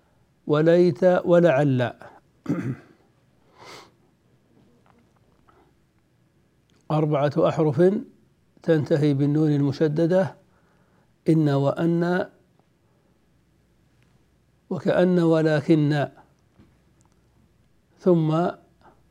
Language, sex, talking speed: Arabic, male, 40 wpm